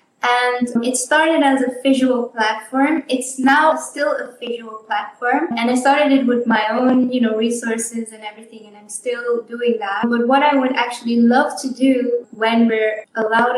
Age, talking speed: 10-29, 180 wpm